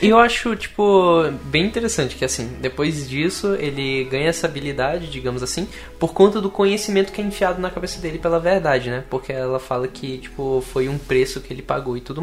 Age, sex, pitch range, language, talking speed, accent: 10-29, male, 130-185 Hz, Portuguese, 200 wpm, Brazilian